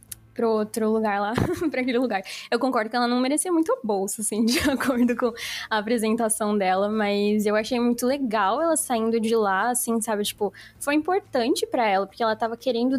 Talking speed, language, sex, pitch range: 200 wpm, Portuguese, female, 230-315 Hz